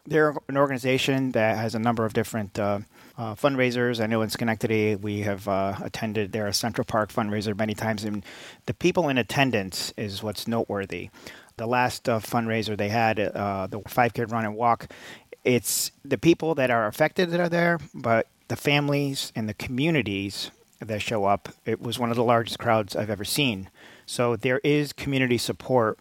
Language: English